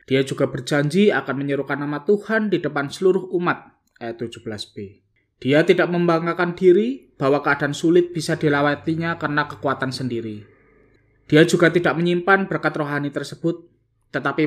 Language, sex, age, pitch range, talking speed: Indonesian, male, 20-39, 120-165 Hz, 140 wpm